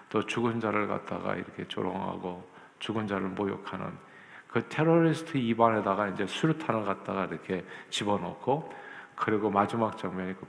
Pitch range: 100-120 Hz